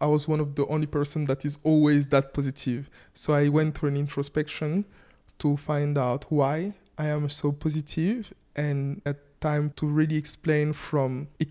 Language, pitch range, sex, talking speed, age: English, 145-160 Hz, male, 175 wpm, 20-39